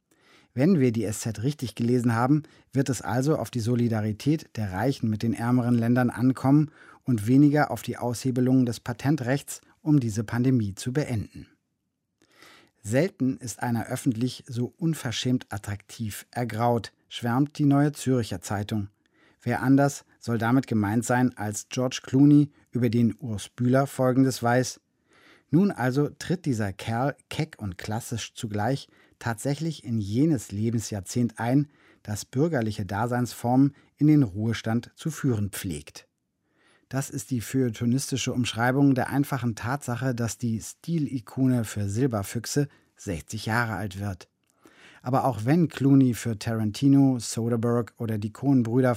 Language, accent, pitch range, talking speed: German, German, 115-135 Hz, 135 wpm